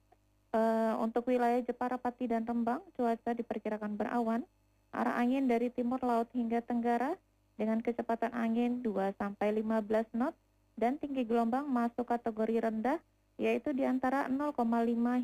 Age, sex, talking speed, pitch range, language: 20-39, female, 120 wpm, 220-250 Hz, Indonesian